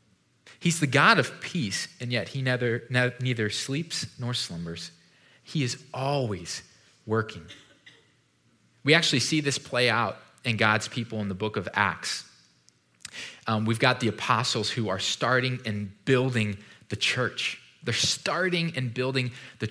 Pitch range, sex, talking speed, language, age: 110-150 Hz, male, 145 wpm, English, 20-39